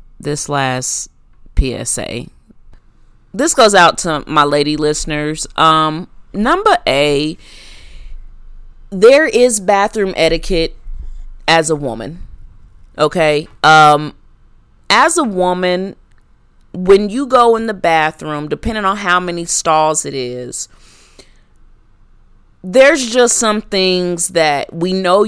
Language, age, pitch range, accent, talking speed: English, 30-49, 155-230 Hz, American, 105 wpm